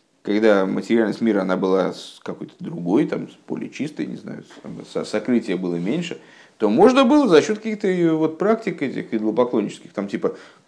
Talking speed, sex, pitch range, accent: 150 wpm, male, 115-170 Hz, native